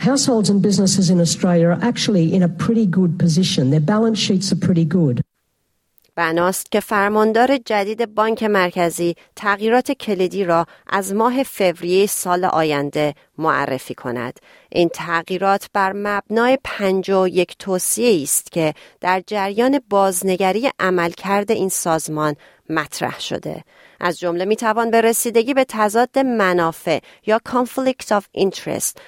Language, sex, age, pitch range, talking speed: Persian, female, 40-59, 175-225 Hz, 90 wpm